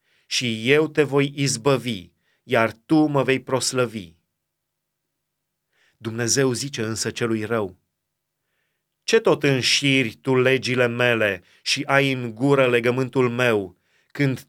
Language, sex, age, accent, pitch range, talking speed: Romanian, male, 30-49, native, 115-145 Hz, 115 wpm